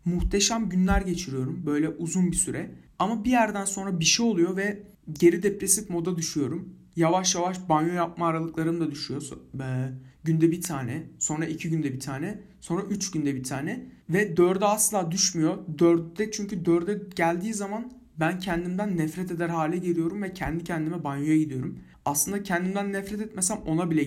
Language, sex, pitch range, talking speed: Turkish, male, 145-205 Hz, 165 wpm